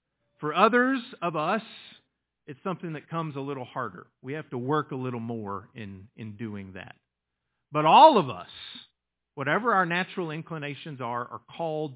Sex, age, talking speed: male, 40-59, 165 wpm